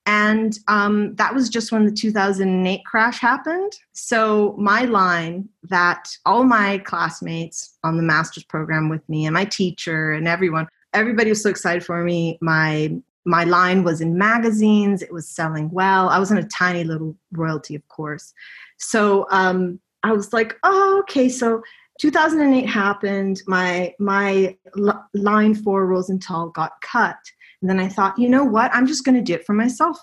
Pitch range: 175-225 Hz